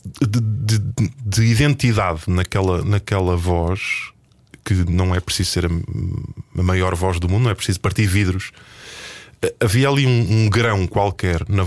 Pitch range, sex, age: 95-120 Hz, male, 20-39